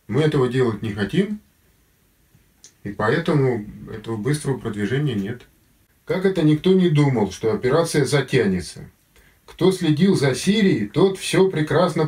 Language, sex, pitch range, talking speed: Russian, male, 105-150 Hz, 130 wpm